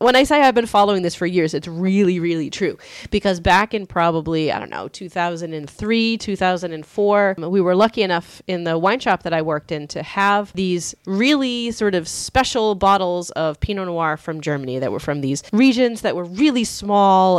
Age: 30-49